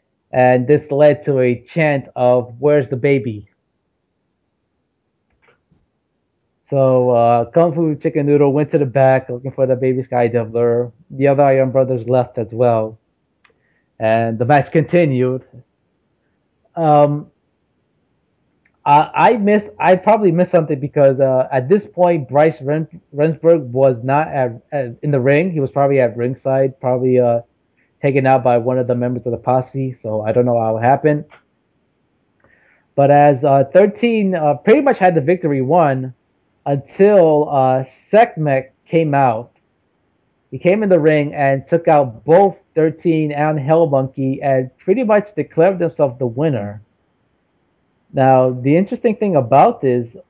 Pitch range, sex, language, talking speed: 125-155 Hz, male, English, 150 wpm